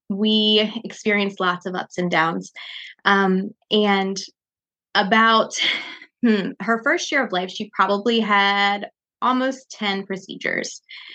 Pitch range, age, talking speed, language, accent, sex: 195-230 Hz, 20-39, 120 wpm, English, American, female